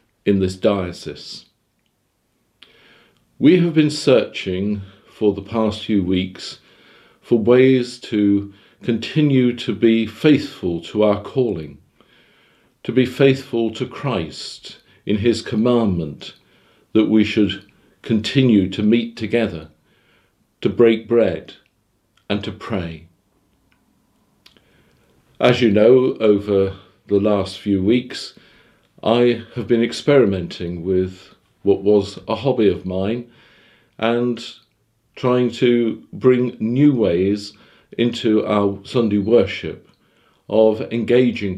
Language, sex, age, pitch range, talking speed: English, male, 50-69, 100-120 Hz, 105 wpm